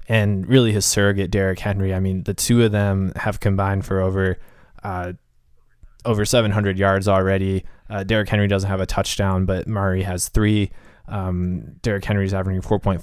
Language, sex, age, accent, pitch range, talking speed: English, male, 20-39, American, 95-110 Hz, 180 wpm